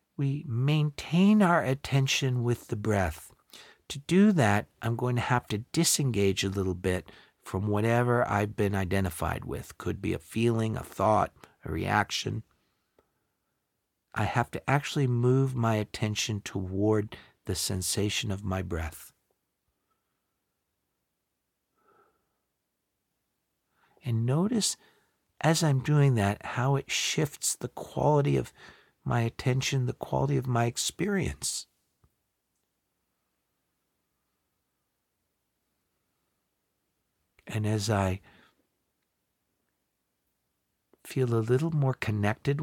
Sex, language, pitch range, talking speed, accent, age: male, English, 95-130 Hz, 105 wpm, American, 50-69